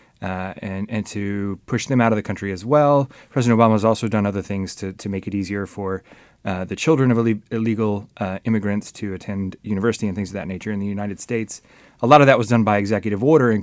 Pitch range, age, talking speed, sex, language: 100-120 Hz, 30-49, 240 wpm, male, English